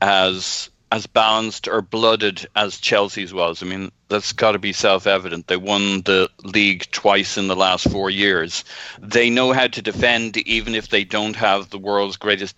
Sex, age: male, 40-59